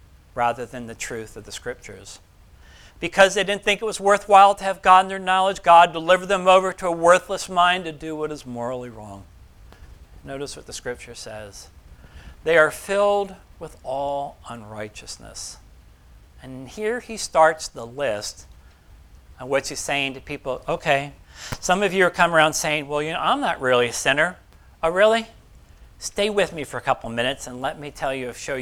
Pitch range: 120-190 Hz